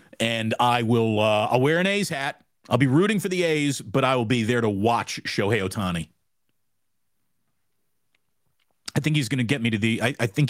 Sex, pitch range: male, 110-145 Hz